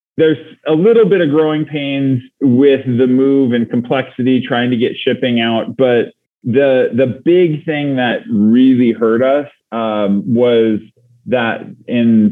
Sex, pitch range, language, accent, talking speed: male, 110-135 Hz, English, American, 145 wpm